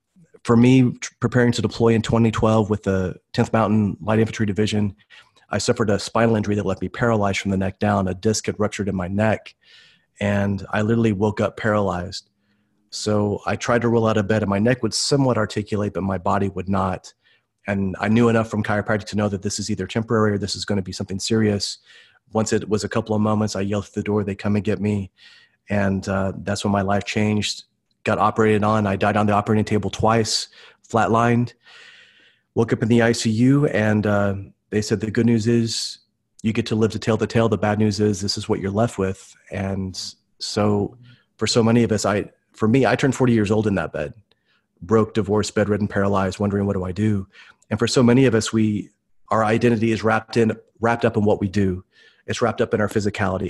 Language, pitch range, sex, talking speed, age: English, 100-110 Hz, male, 220 wpm, 30-49